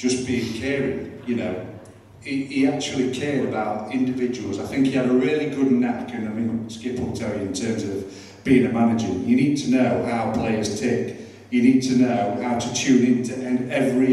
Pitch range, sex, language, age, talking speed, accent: 115-135 Hz, male, English, 40-59, 205 wpm, British